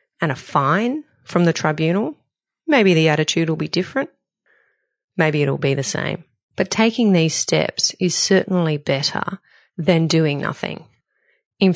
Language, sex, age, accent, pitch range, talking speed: English, female, 30-49, Australian, 160-190 Hz, 145 wpm